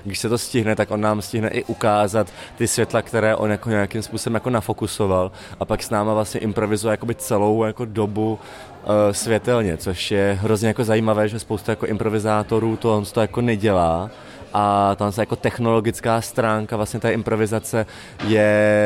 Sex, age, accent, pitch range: male, 20-39, native, 100-110 Hz